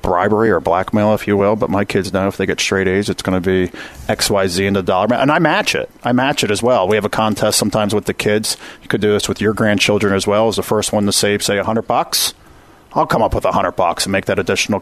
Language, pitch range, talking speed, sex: English, 105-135 Hz, 290 wpm, male